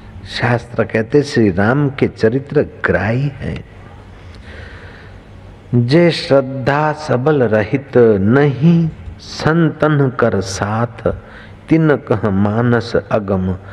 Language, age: Hindi, 50-69